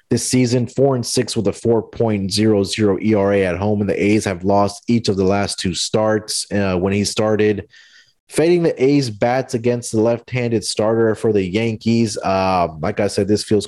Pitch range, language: 100-115 Hz, English